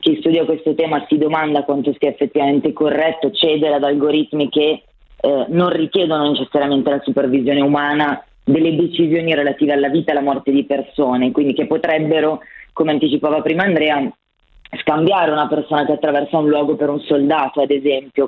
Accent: native